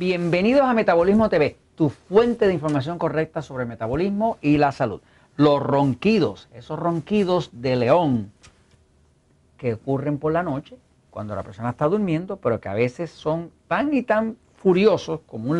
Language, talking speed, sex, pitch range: Spanish, 160 wpm, male, 125-175 Hz